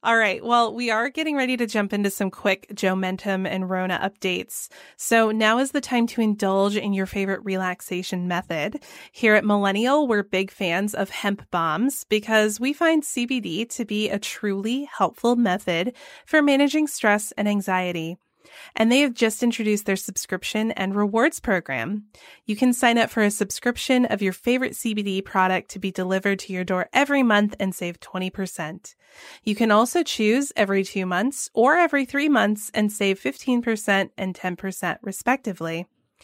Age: 20-39